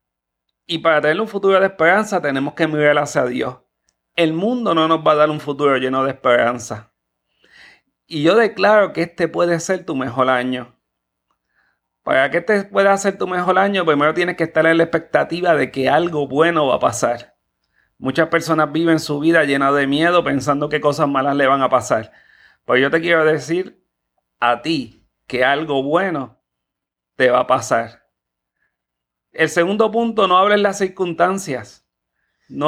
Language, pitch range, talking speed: Spanish, 130-185 Hz, 175 wpm